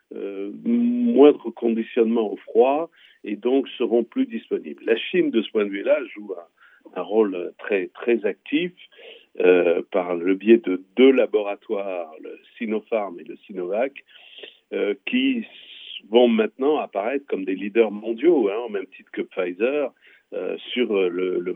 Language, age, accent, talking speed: Italian, 50-69, French, 150 wpm